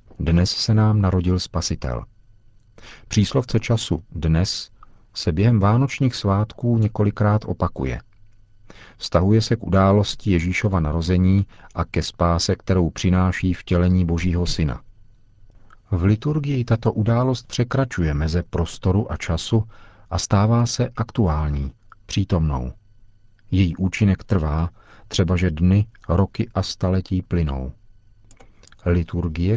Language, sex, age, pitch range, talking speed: Czech, male, 40-59, 85-105 Hz, 110 wpm